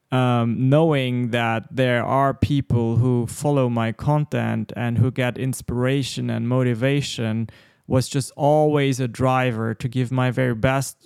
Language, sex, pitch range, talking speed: English, male, 120-150 Hz, 140 wpm